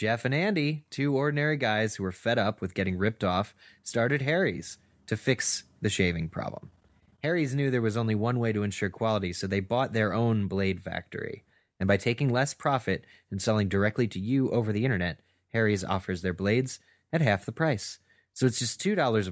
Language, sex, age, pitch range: English, male, 20-39, 95-125 Hz